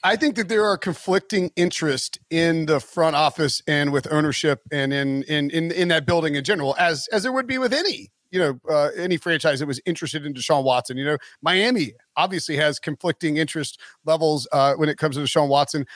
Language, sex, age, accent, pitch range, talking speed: English, male, 40-59, American, 145-175 Hz, 210 wpm